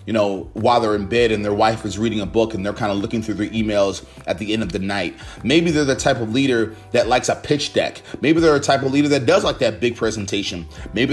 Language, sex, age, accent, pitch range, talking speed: English, male, 30-49, American, 105-135 Hz, 280 wpm